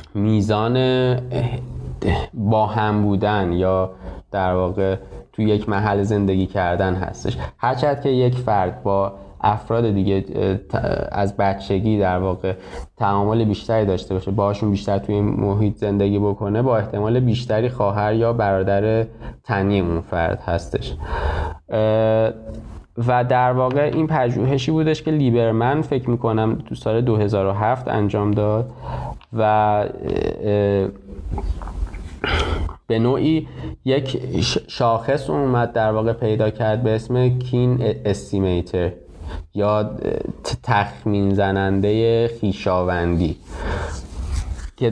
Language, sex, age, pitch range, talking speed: Persian, male, 20-39, 95-120 Hz, 105 wpm